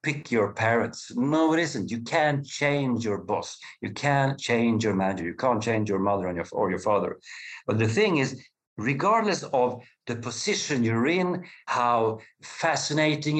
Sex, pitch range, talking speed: male, 105-140 Hz, 160 wpm